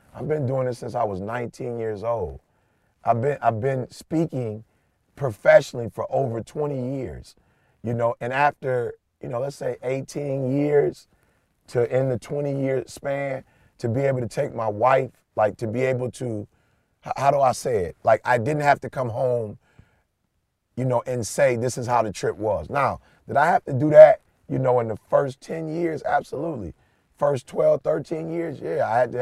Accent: American